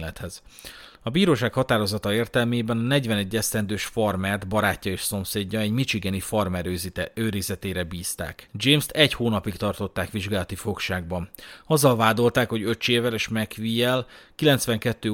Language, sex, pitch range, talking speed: Hungarian, male, 95-120 Hz, 110 wpm